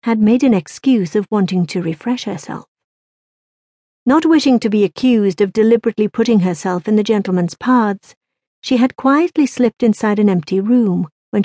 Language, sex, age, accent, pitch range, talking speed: English, female, 50-69, British, 185-245 Hz, 160 wpm